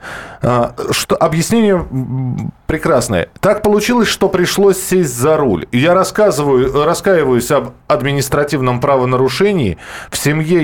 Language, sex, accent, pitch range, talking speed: Russian, male, native, 125-175 Hz, 100 wpm